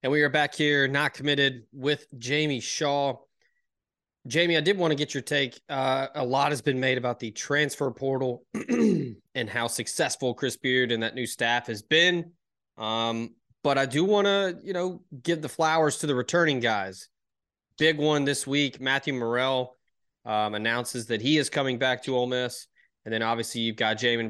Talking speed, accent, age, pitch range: 190 wpm, American, 20-39, 115-145 Hz